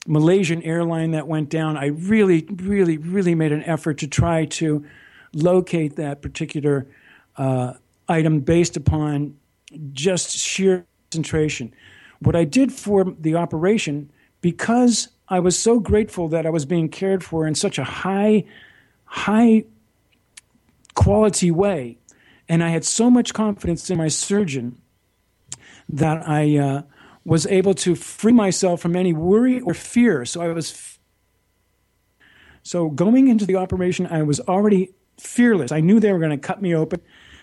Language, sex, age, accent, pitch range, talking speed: English, male, 50-69, American, 145-185 Hz, 150 wpm